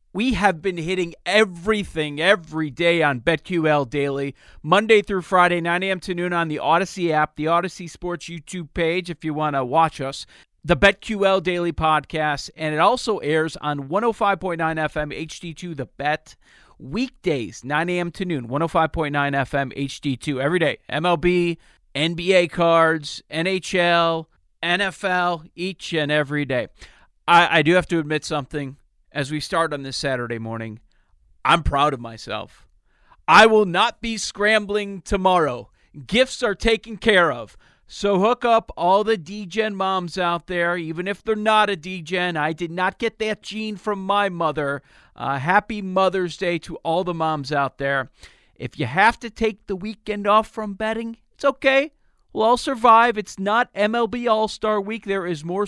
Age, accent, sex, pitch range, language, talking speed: 40-59, American, male, 155-205 Hz, English, 165 wpm